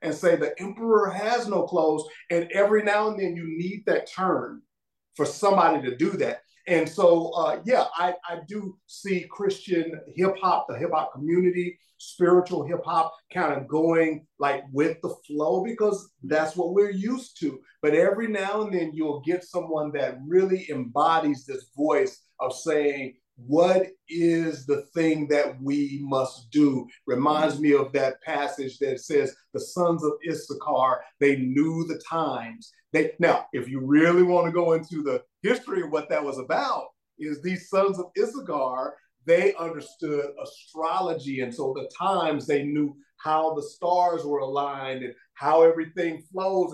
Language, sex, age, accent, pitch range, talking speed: English, male, 50-69, American, 150-185 Hz, 160 wpm